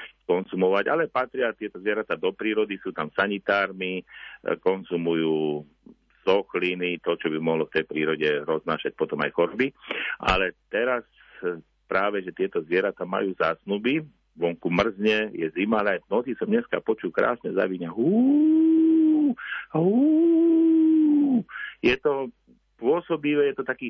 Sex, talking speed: male, 125 wpm